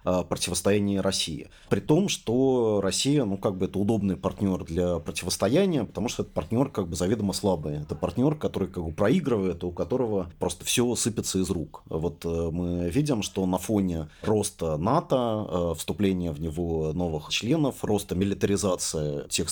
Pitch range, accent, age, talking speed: 90-105 Hz, native, 30-49, 155 wpm